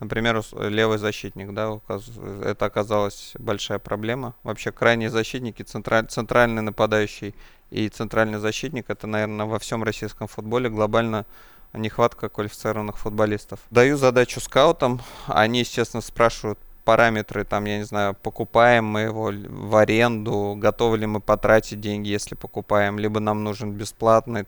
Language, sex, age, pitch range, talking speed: Russian, male, 20-39, 105-115 Hz, 130 wpm